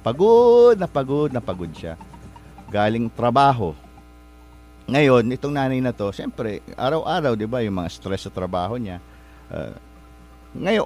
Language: English